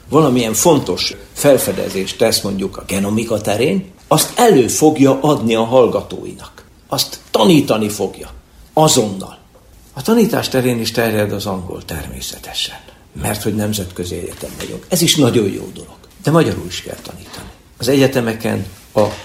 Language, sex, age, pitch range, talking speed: Hungarian, male, 60-79, 95-125 Hz, 135 wpm